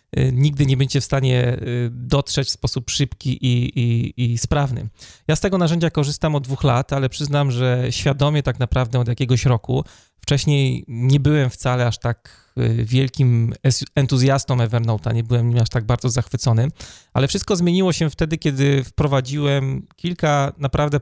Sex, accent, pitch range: male, native, 120-140 Hz